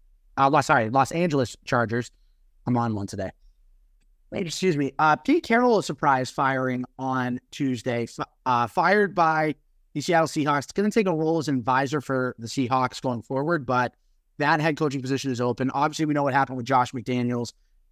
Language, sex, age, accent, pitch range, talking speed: English, male, 30-49, American, 130-160 Hz, 185 wpm